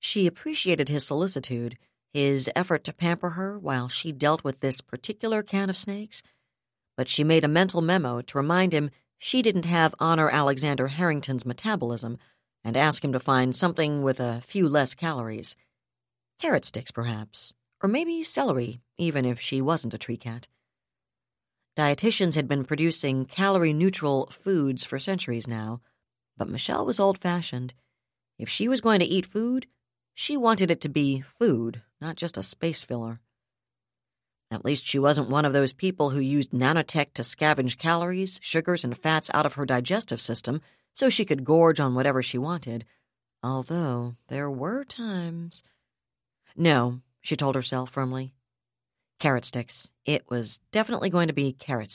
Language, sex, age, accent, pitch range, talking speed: English, female, 50-69, American, 125-170 Hz, 160 wpm